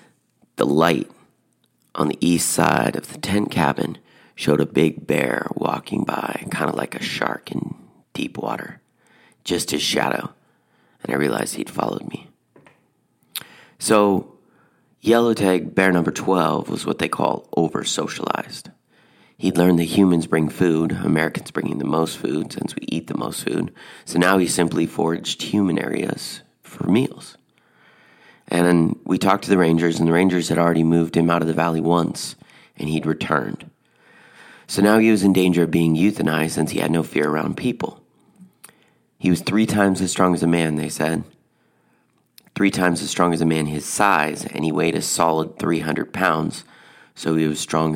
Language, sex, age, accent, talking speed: English, male, 30-49, American, 175 wpm